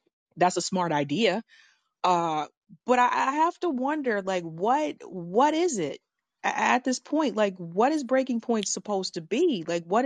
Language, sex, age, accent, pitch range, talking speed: English, female, 30-49, American, 170-235 Hz, 175 wpm